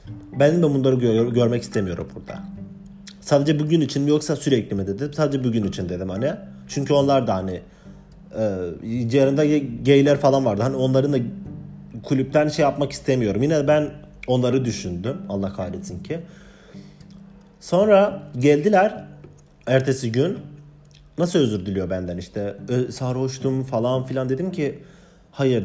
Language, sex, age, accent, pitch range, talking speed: Turkish, male, 40-59, native, 110-160 Hz, 135 wpm